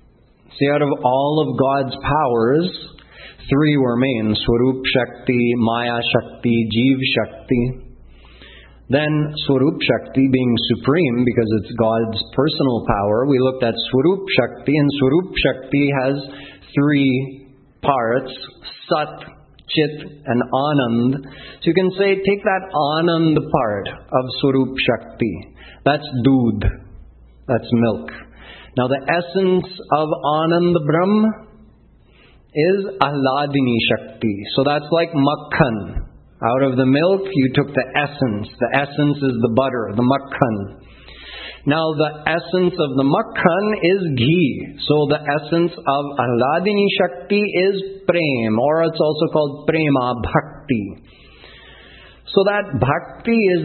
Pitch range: 120-155 Hz